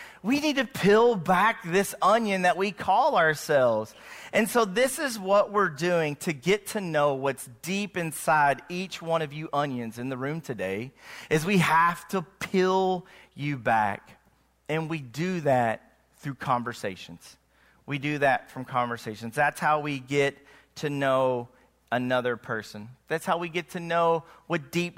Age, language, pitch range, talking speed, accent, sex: 40-59, English, 135-170 Hz, 165 wpm, American, male